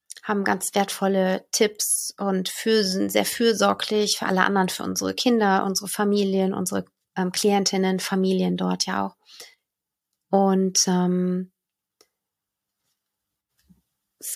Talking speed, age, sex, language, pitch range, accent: 115 wpm, 30-49, female, German, 175-205 Hz, German